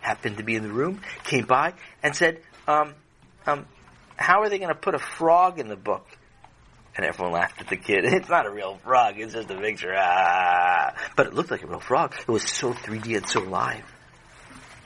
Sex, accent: male, American